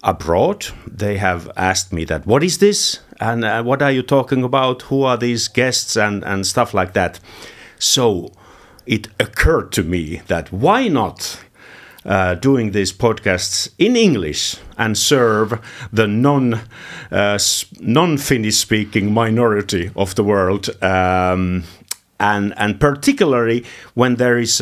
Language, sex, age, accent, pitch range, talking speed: Finnish, male, 50-69, native, 95-125 Hz, 140 wpm